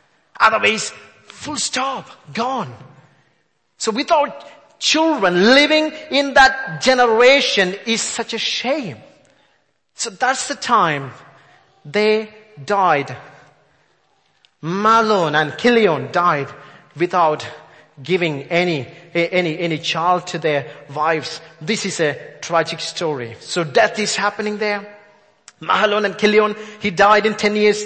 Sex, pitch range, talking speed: male, 155-215 Hz, 110 wpm